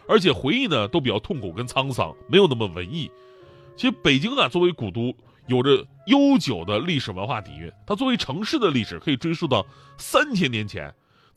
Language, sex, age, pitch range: Chinese, male, 30-49, 120-175 Hz